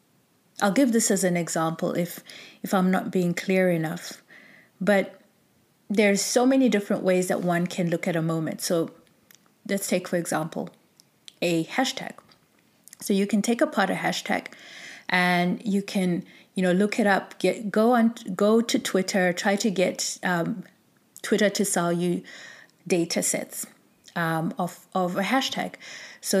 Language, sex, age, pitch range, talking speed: English, female, 30-49, 175-205 Hz, 160 wpm